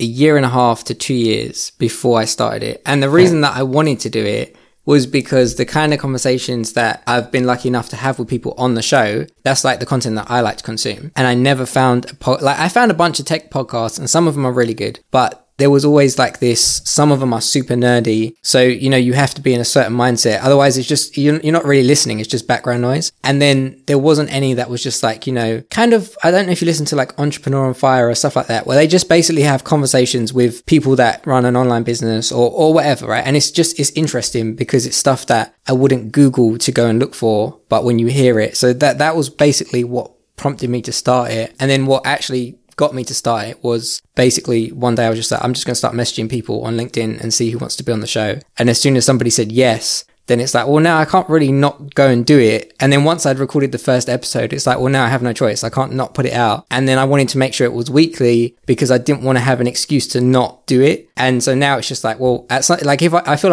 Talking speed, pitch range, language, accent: 275 wpm, 120-145 Hz, English, British